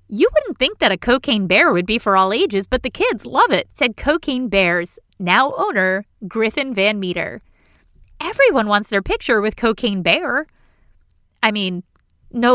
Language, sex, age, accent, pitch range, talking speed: English, female, 30-49, American, 195-290 Hz, 165 wpm